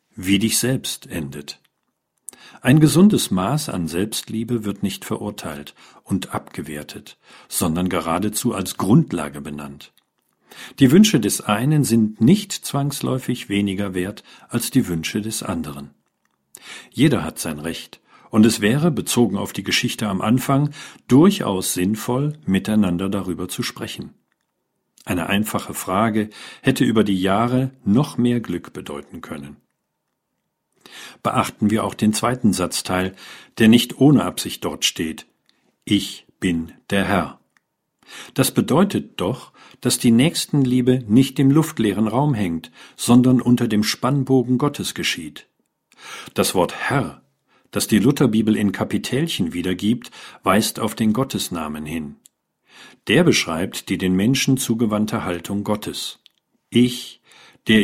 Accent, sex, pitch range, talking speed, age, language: German, male, 95-125 Hz, 125 wpm, 50-69, German